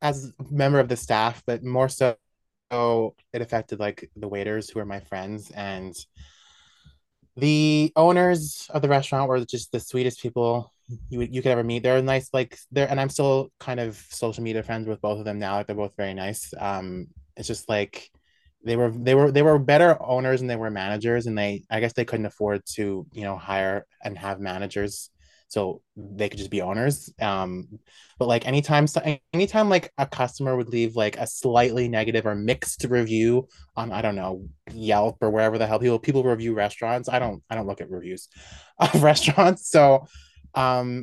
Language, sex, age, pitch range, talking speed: English, male, 20-39, 105-135 Hz, 195 wpm